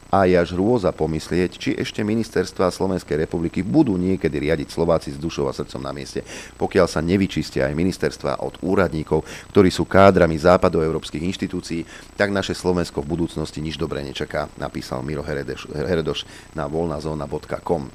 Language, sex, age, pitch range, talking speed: Slovak, male, 40-59, 80-100 Hz, 150 wpm